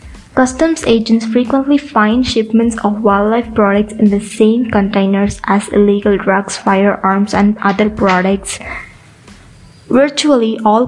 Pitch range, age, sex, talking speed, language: 210-230 Hz, 20-39, female, 115 wpm, English